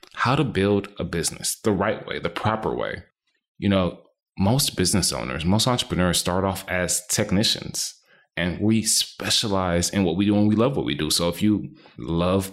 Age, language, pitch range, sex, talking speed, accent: 20-39, English, 90-110 Hz, male, 185 wpm, American